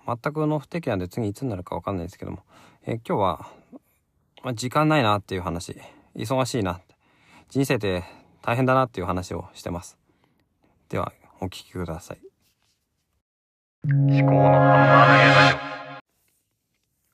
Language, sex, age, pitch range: Japanese, male, 40-59, 95-135 Hz